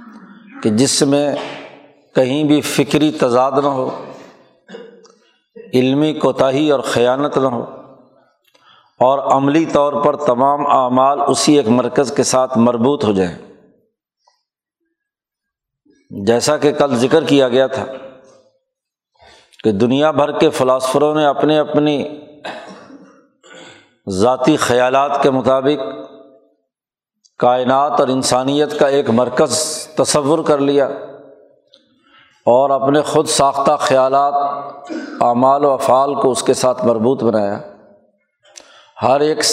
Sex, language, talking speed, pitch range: male, Urdu, 110 wpm, 130-155 Hz